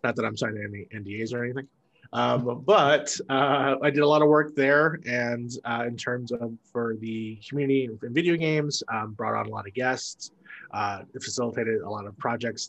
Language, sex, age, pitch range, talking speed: English, male, 20-39, 110-145 Hz, 200 wpm